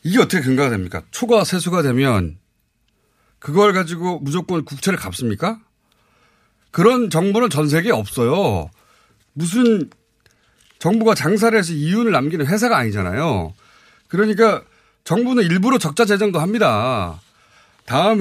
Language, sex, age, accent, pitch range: Korean, male, 30-49, native, 140-220 Hz